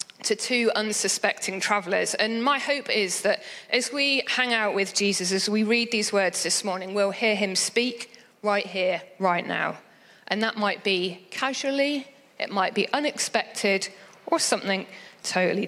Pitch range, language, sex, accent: 200-250 Hz, English, female, British